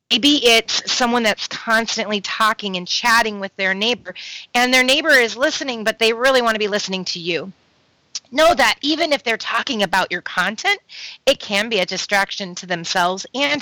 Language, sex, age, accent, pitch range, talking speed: English, female, 30-49, American, 195-275 Hz, 185 wpm